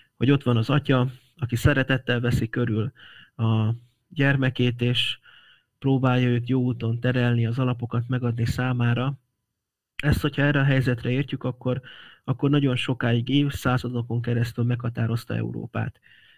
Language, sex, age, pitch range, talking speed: Hungarian, male, 30-49, 120-140 Hz, 130 wpm